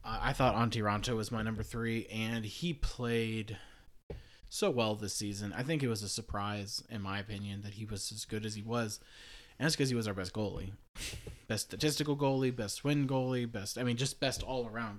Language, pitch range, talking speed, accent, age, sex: English, 100-120 Hz, 210 wpm, American, 20-39, male